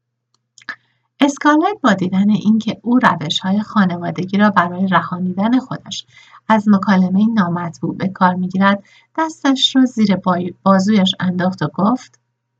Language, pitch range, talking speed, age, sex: Persian, 175-230 Hz, 125 wpm, 60-79, female